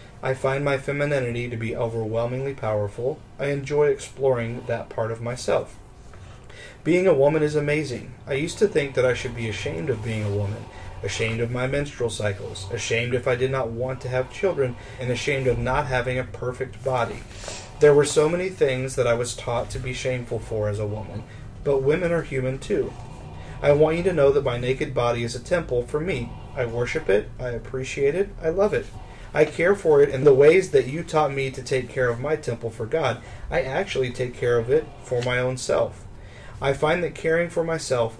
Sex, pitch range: male, 115-140 Hz